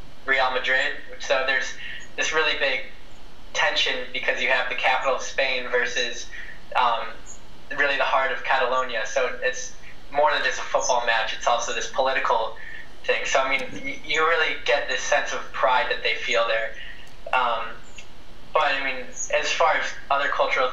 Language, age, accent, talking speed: English, 10-29, American, 170 wpm